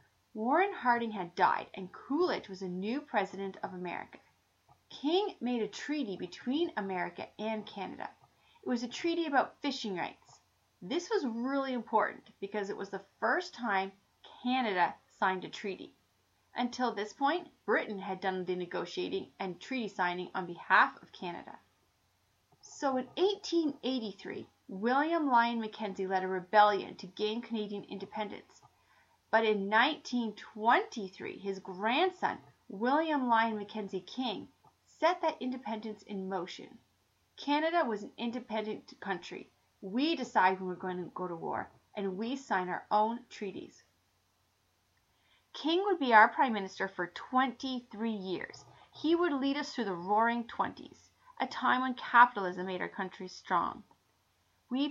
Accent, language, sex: American, English, female